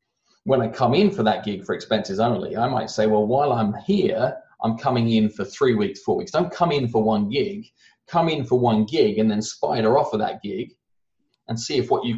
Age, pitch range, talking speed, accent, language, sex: 30-49, 110-165 Hz, 235 wpm, British, English, male